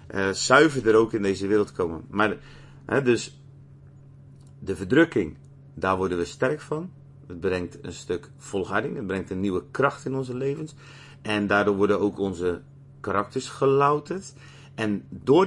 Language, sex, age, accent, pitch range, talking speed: Dutch, male, 40-59, Dutch, 105-140 Hz, 155 wpm